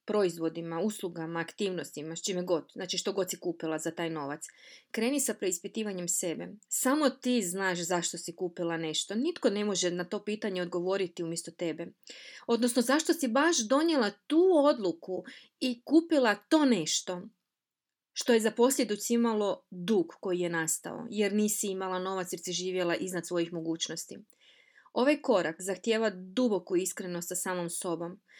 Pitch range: 180-235 Hz